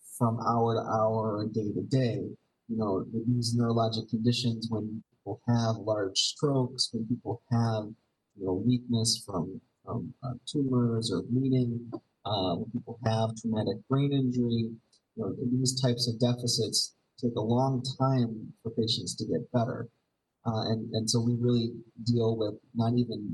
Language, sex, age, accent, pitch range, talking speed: English, male, 30-49, American, 110-125 Hz, 160 wpm